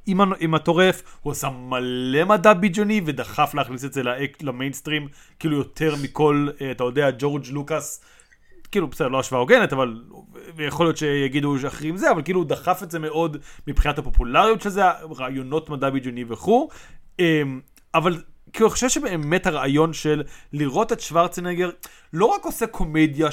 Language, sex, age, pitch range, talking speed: Hebrew, male, 30-49, 145-215 Hz, 160 wpm